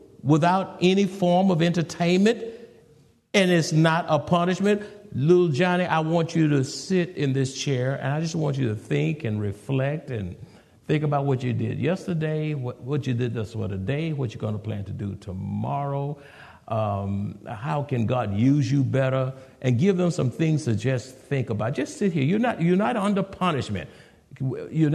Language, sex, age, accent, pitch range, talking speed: English, male, 60-79, American, 130-190 Hz, 185 wpm